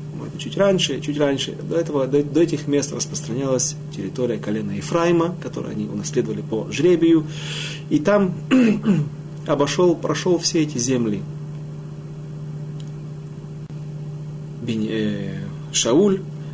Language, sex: Russian, male